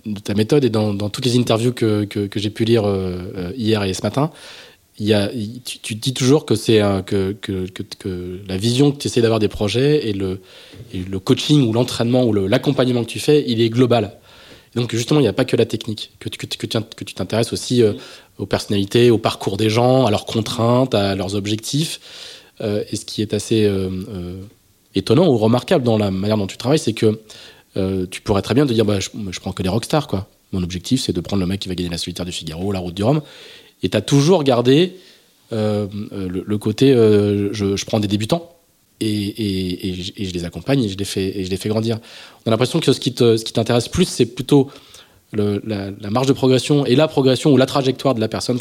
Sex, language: male, French